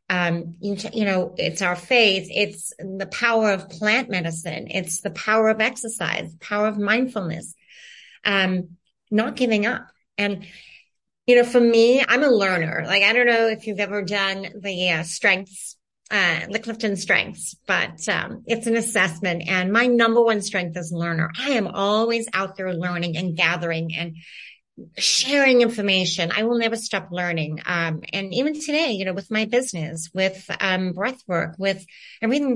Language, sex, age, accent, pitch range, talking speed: English, female, 30-49, American, 180-225 Hz, 170 wpm